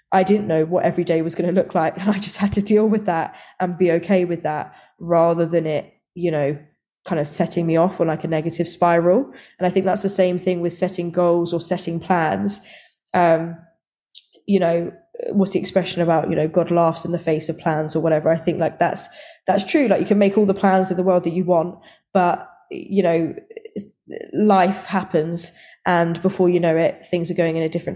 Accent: British